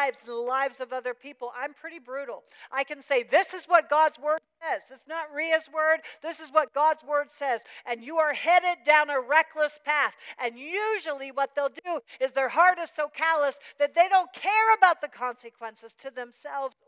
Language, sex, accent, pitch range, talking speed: English, female, American, 185-290 Hz, 200 wpm